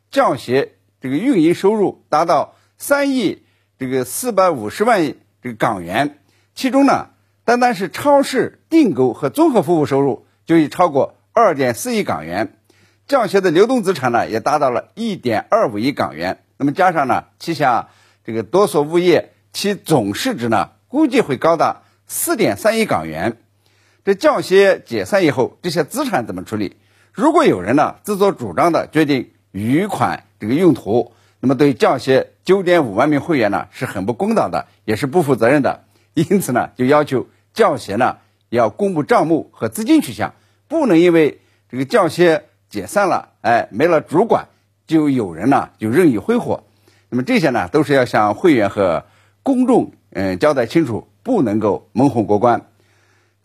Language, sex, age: Chinese, male, 50-69